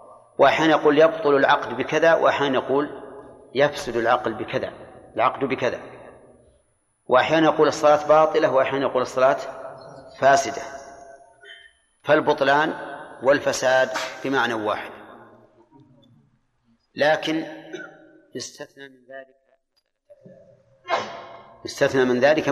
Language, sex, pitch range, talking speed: Arabic, male, 130-150 Hz, 85 wpm